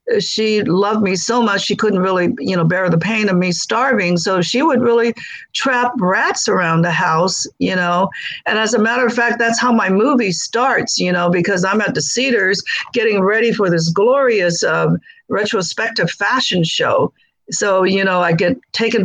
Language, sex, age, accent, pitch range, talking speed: English, female, 50-69, American, 175-235 Hz, 190 wpm